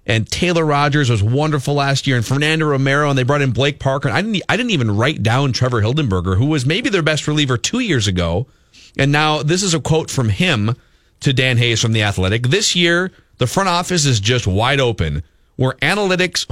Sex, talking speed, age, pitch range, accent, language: male, 210 wpm, 40-59, 110-165 Hz, American, English